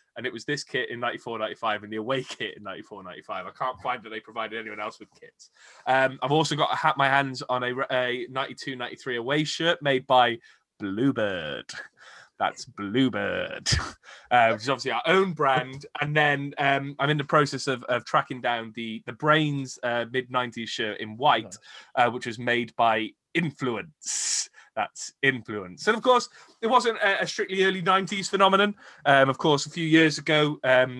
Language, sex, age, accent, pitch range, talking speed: English, male, 20-39, British, 125-160 Hz, 190 wpm